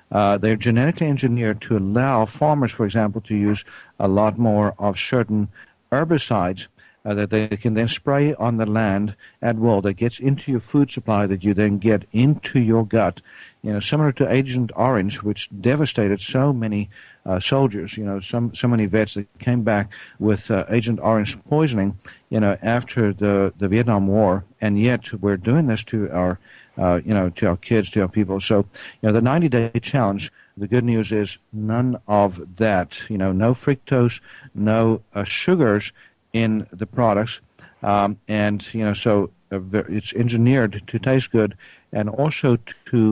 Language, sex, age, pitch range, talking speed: English, male, 60-79, 100-120 Hz, 180 wpm